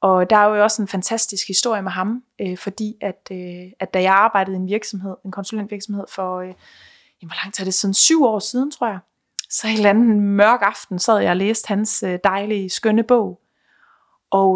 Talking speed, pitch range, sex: 205 wpm, 195-245 Hz, female